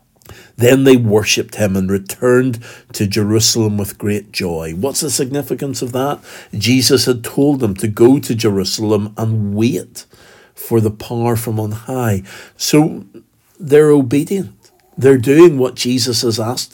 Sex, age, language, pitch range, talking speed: male, 60-79, English, 100-130 Hz, 145 wpm